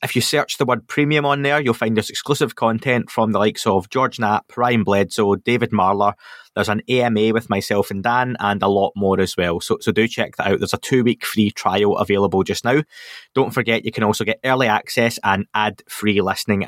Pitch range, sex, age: 105-120 Hz, male, 20-39